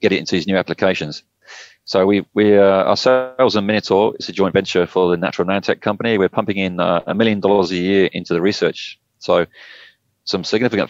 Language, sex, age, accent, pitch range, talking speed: English, male, 30-49, British, 90-105 Hz, 205 wpm